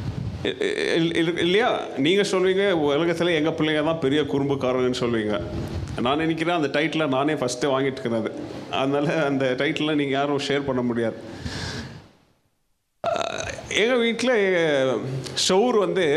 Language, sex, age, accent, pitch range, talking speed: Tamil, male, 30-49, native, 125-165 Hz, 110 wpm